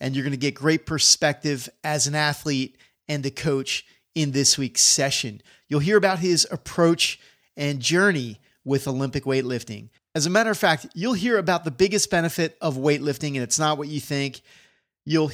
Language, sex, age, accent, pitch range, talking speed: English, male, 30-49, American, 130-165 Hz, 185 wpm